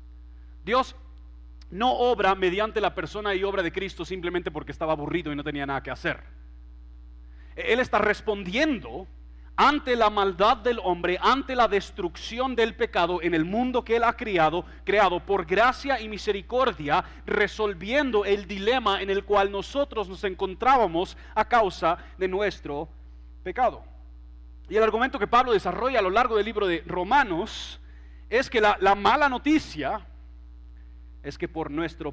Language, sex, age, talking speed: Spanish, male, 40-59, 155 wpm